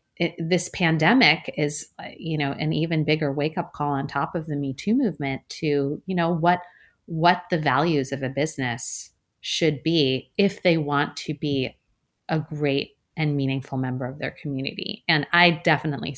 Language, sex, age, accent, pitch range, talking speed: English, female, 30-49, American, 140-180 Hz, 170 wpm